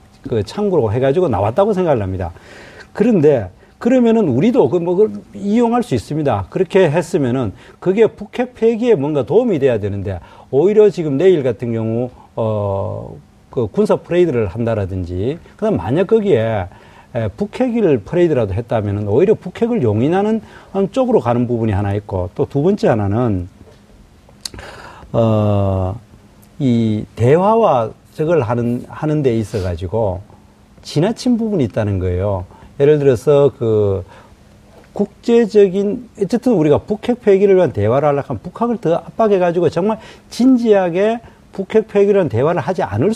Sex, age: male, 40-59